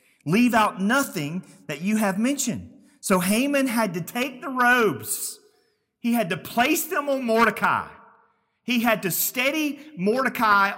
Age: 40-59